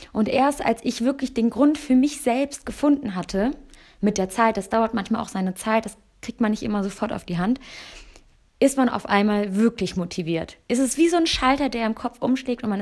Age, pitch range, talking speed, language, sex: 20-39, 210-255 Hz, 225 wpm, German, female